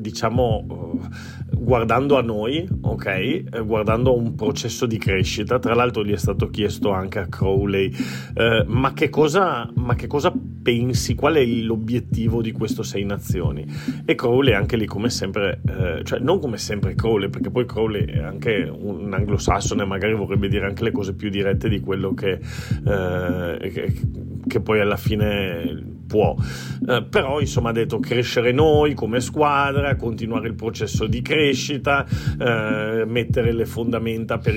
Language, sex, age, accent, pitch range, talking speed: Italian, male, 40-59, native, 110-130 Hz, 160 wpm